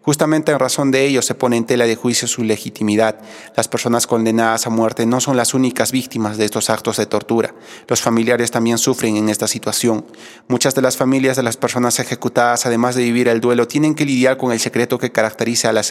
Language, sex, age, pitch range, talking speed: Spanish, male, 30-49, 110-125 Hz, 220 wpm